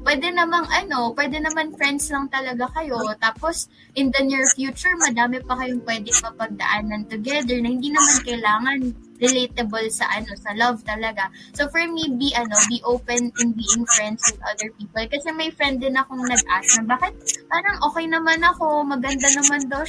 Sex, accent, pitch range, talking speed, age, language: female, native, 225-290 Hz, 185 wpm, 20-39, Filipino